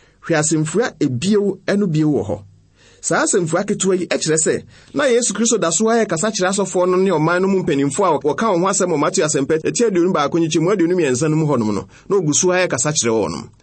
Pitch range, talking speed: 140-205 Hz, 180 wpm